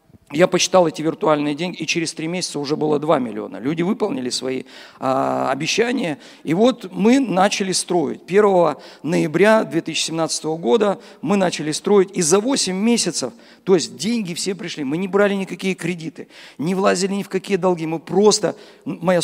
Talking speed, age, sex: 165 wpm, 50-69, male